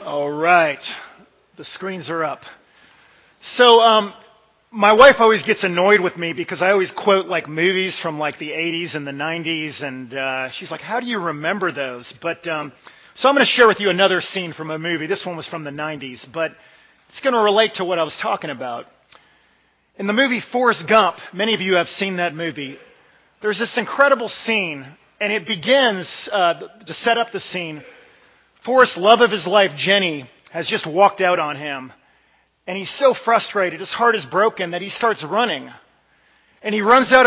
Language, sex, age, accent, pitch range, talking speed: English, male, 40-59, American, 175-230 Hz, 195 wpm